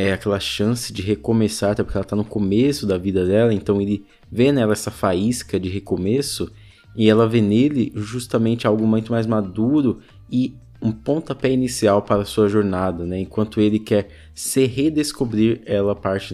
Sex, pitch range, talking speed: male, 95-115 Hz, 175 wpm